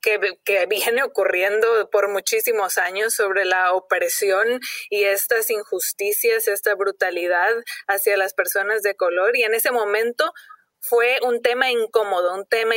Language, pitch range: Spanish, 200-255 Hz